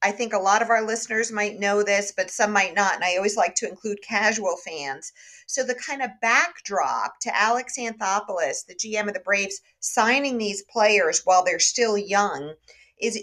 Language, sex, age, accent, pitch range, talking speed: English, female, 50-69, American, 200-245 Hz, 195 wpm